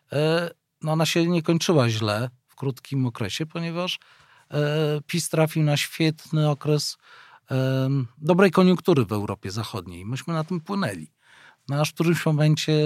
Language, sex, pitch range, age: Polish, male, 125-165 Hz, 40-59